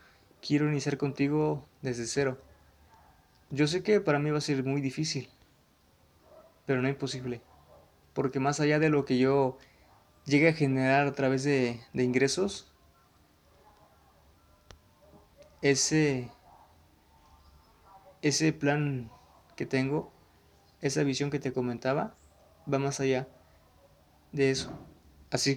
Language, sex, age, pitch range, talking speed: Spanish, male, 20-39, 85-145 Hz, 115 wpm